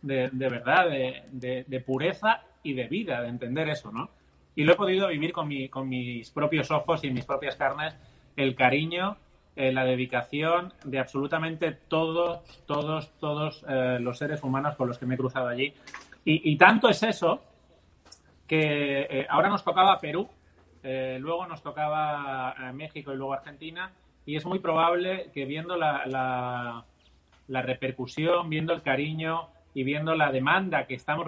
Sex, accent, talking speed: male, Spanish, 170 wpm